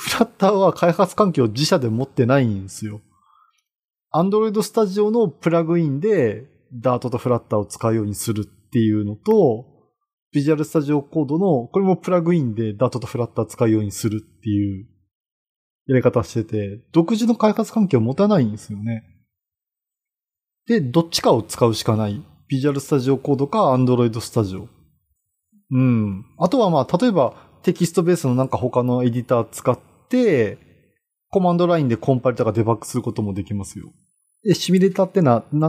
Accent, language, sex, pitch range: native, Japanese, male, 115-175 Hz